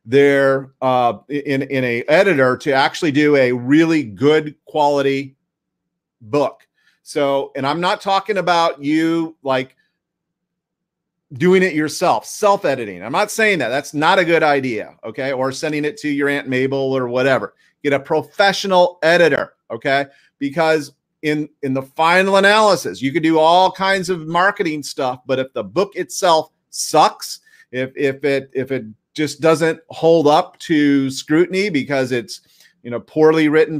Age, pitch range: 40-59, 140-170 Hz